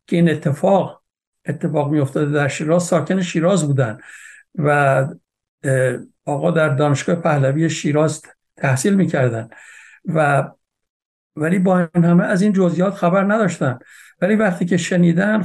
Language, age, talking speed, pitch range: Persian, 60-79, 125 wpm, 150-185 Hz